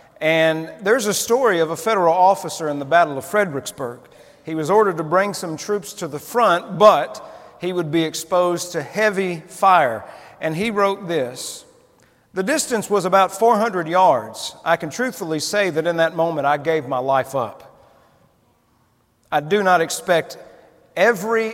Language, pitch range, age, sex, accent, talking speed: English, 160-205 Hz, 50-69, male, American, 165 wpm